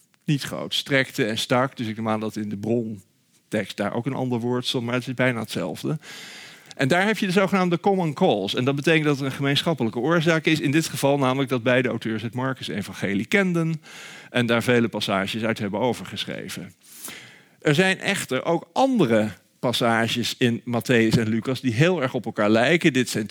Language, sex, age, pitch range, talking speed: Dutch, male, 50-69, 110-145 Hz, 200 wpm